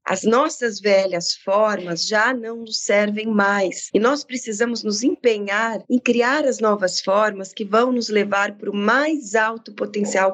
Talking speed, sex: 165 wpm, female